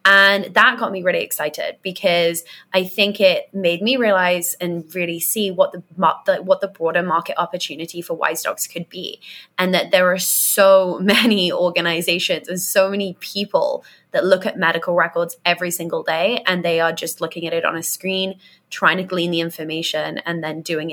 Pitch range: 170-195 Hz